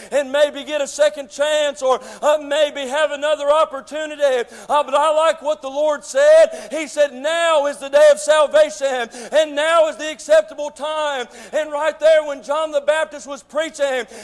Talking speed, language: 180 wpm, English